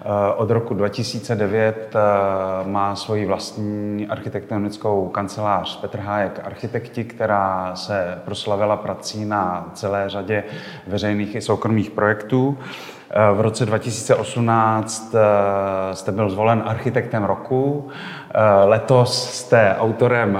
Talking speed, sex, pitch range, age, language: 95 wpm, male, 100-115 Hz, 30-49, Czech